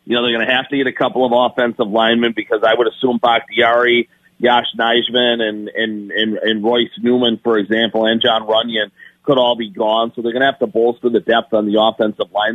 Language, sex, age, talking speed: English, male, 40-59, 230 wpm